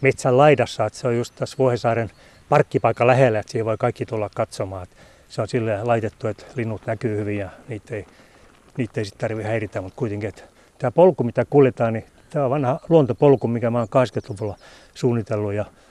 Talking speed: 180 wpm